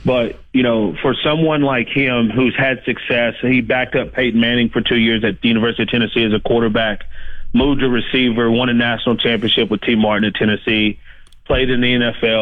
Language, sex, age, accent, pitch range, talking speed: English, male, 30-49, American, 110-125 Hz, 205 wpm